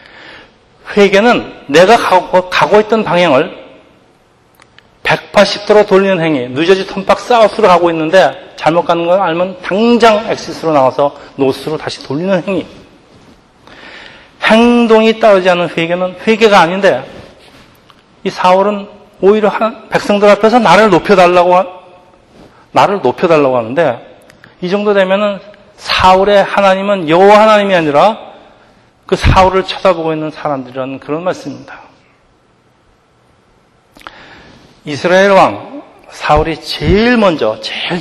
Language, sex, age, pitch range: Korean, male, 40-59, 155-200 Hz